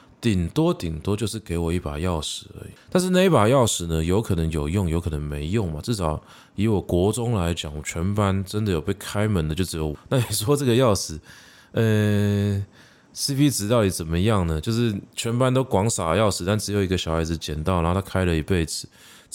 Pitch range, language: 85-115 Hz, Chinese